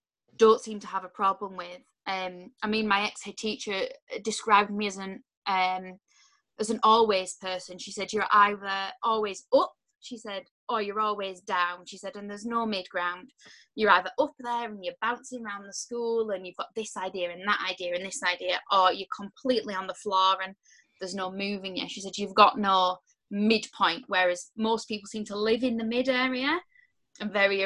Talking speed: 195 wpm